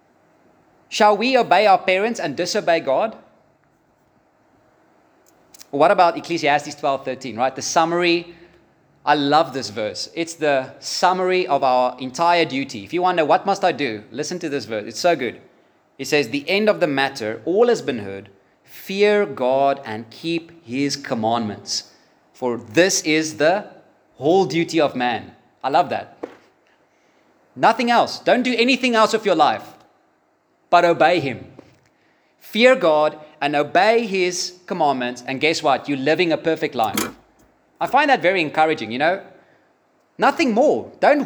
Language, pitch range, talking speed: English, 130-185 Hz, 155 wpm